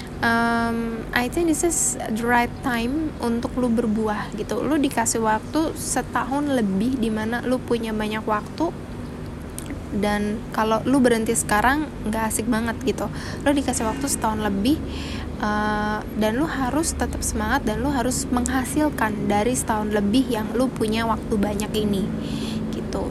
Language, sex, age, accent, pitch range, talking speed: Indonesian, female, 10-29, native, 215-255 Hz, 145 wpm